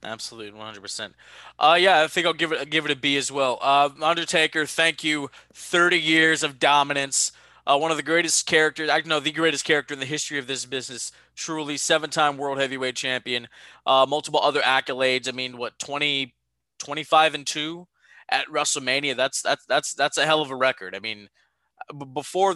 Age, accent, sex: 20-39, American, male